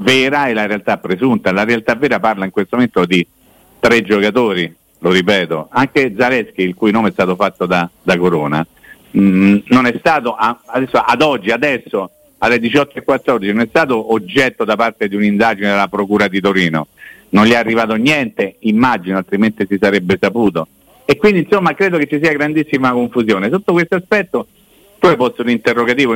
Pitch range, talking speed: 105-150 Hz, 175 wpm